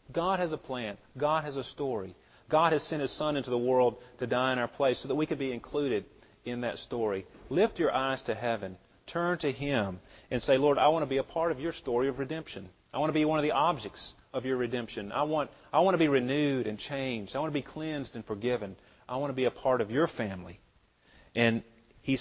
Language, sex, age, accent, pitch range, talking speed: English, male, 40-59, American, 115-155 Hz, 245 wpm